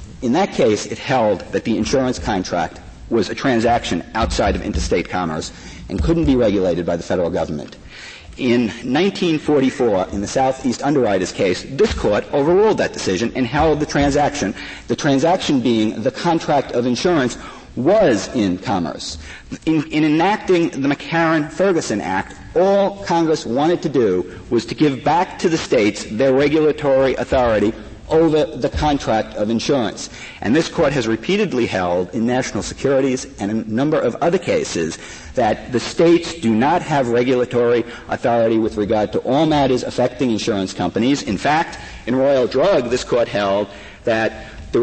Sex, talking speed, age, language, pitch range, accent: male, 155 wpm, 50-69, English, 105-145 Hz, American